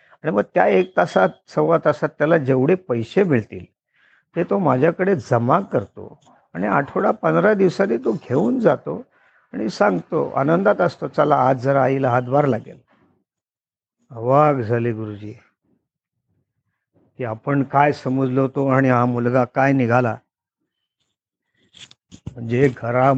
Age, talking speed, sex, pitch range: 50-69, 80 wpm, male, 120-140 Hz